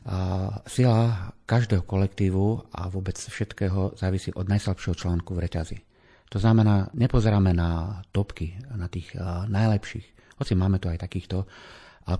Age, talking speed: 40-59, 135 wpm